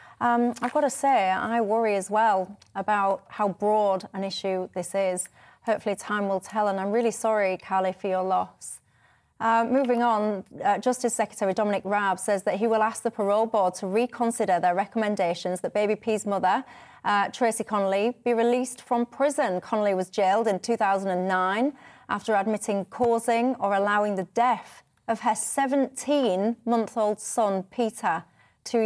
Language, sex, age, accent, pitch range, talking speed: English, female, 30-49, British, 195-230 Hz, 160 wpm